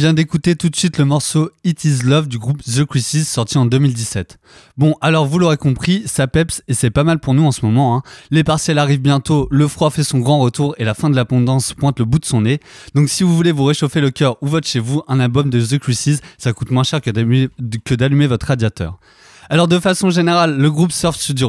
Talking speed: 265 wpm